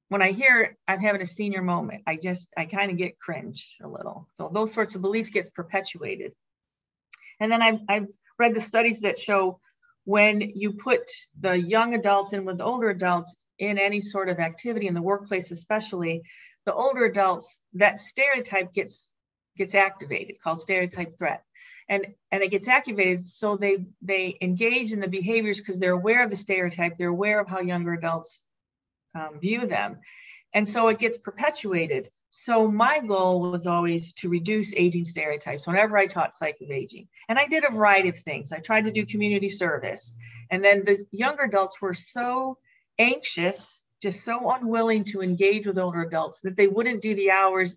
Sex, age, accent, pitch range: female, 40-59, American, 185-220 Hz